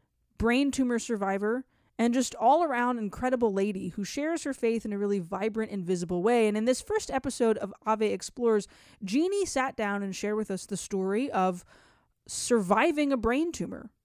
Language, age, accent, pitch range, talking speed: English, 20-39, American, 195-245 Hz, 175 wpm